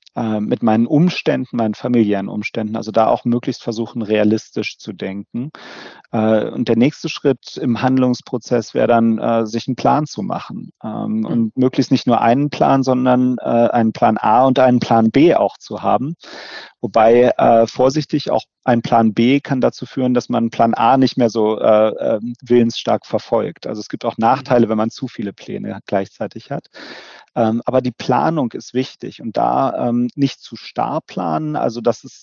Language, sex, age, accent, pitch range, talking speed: German, male, 40-59, German, 115-130 Hz, 165 wpm